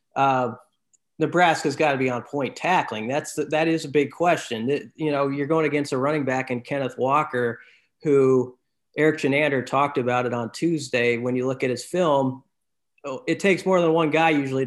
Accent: American